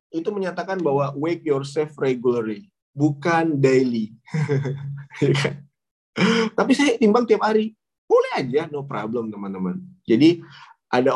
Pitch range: 120-155 Hz